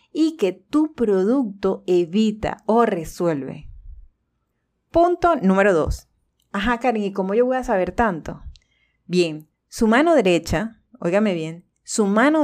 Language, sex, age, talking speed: Spanish, female, 30-49, 130 wpm